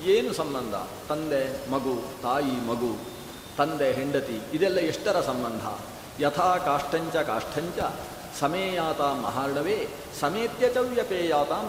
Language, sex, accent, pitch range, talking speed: Kannada, male, native, 145-190 Hz, 85 wpm